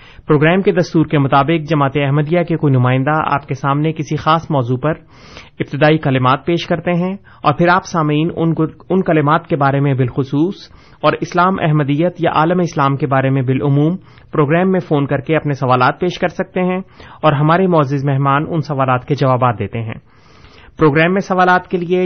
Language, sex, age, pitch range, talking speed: Urdu, male, 30-49, 140-175 Hz, 185 wpm